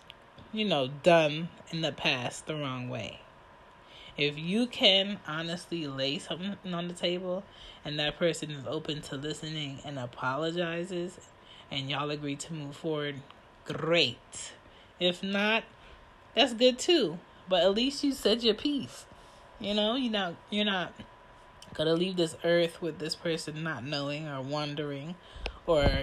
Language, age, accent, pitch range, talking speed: English, 20-39, American, 145-175 Hz, 150 wpm